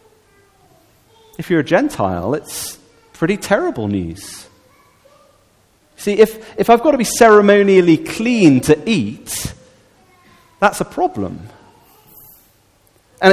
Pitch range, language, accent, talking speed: 150-245 Hz, English, British, 105 wpm